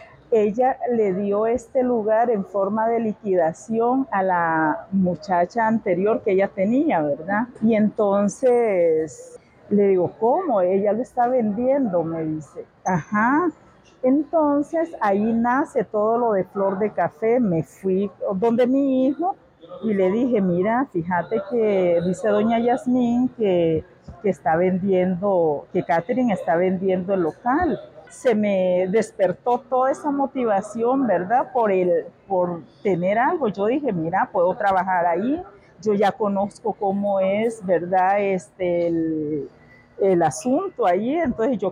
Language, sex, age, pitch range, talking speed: Spanish, female, 50-69, 185-240 Hz, 135 wpm